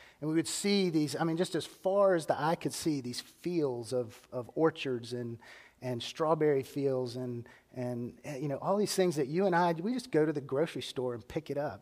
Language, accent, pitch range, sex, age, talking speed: English, American, 135-185 Hz, male, 30-49, 240 wpm